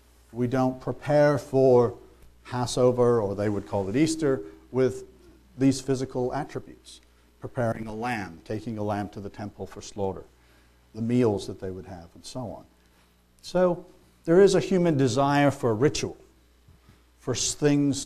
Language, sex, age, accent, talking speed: English, male, 50-69, American, 150 wpm